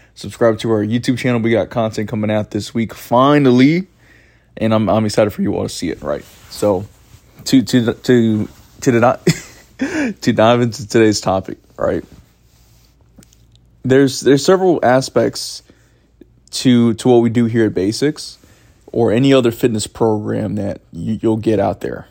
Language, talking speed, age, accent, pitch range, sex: English, 160 wpm, 20-39, American, 105-125 Hz, male